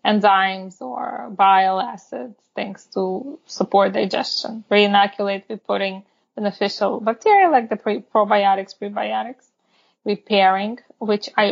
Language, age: English, 20-39